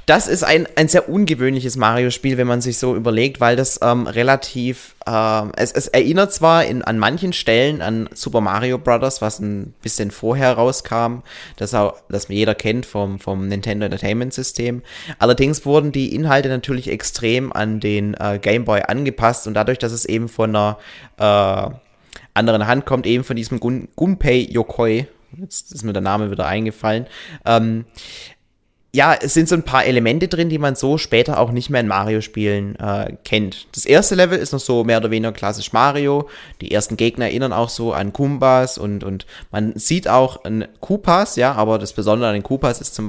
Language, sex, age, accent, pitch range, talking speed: German, male, 20-39, German, 105-130 Hz, 185 wpm